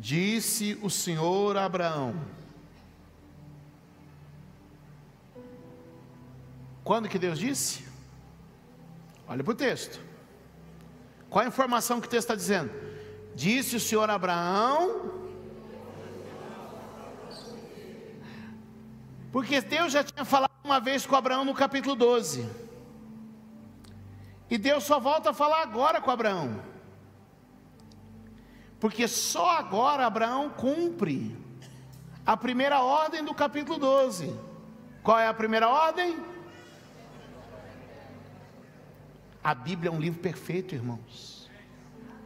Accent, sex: Brazilian, male